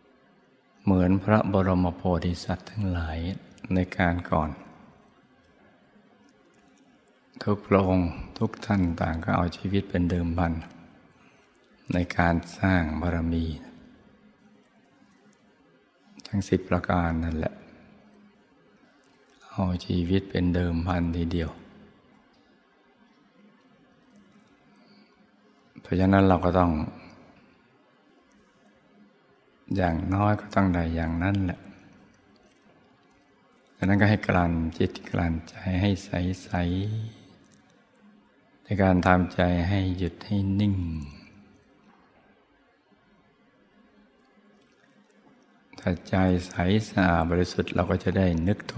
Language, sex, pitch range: Thai, male, 85-95 Hz